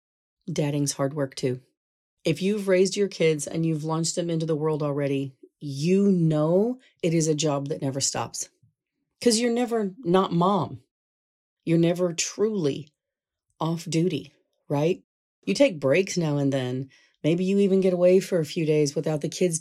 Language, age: English, 40-59